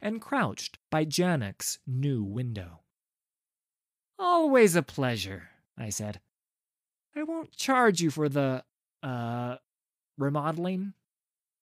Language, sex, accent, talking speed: English, male, American, 100 wpm